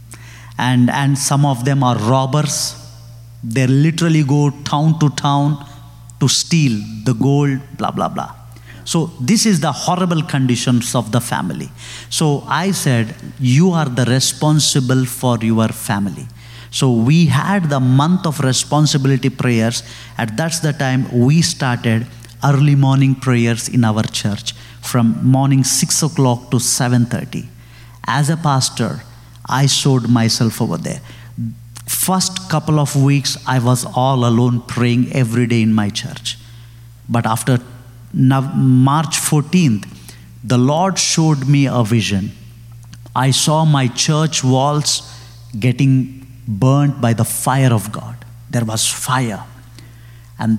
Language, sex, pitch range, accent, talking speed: English, male, 115-140 Hz, Indian, 135 wpm